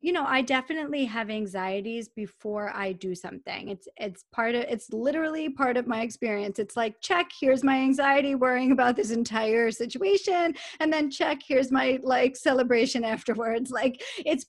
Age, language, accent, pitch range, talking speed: 20-39, English, American, 215-260 Hz, 170 wpm